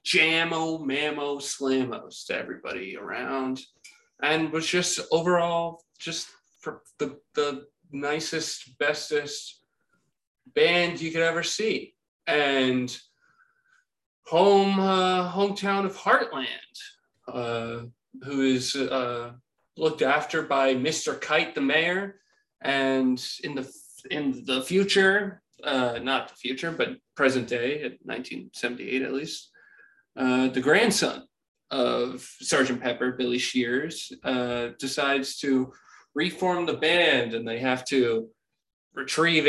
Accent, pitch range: American, 130-175 Hz